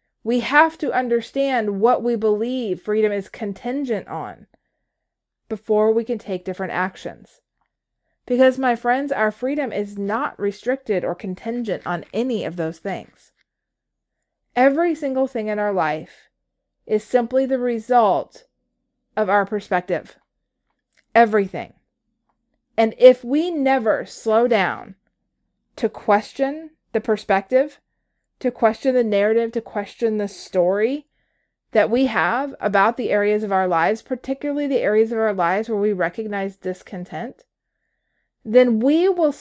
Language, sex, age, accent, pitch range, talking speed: English, female, 30-49, American, 205-255 Hz, 130 wpm